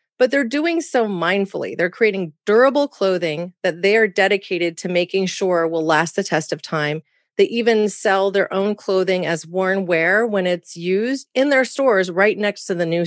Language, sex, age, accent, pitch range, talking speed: English, female, 30-49, American, 170-205 Hz, 195 wpm